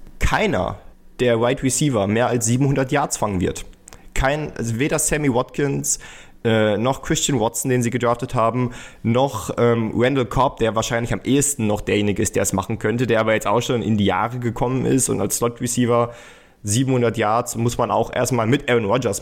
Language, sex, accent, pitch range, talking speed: German, male, German, 105-130 Hz, 190 wpm